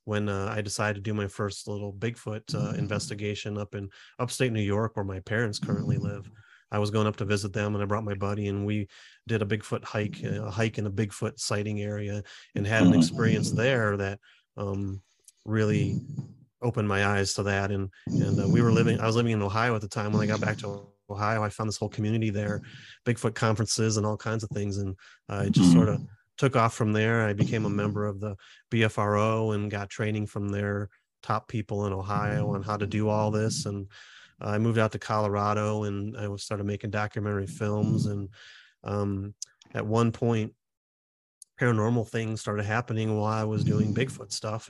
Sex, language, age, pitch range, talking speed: male, English, 30-49, 100-110 Hz, 205 wpm